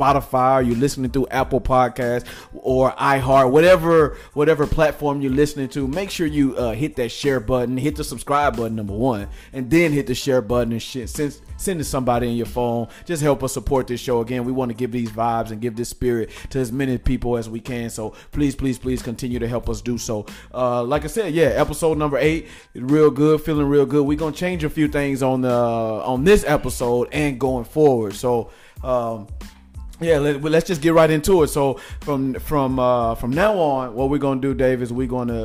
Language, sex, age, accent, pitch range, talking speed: English, male, 30-49, American, 120-145 Hz, 220 wpm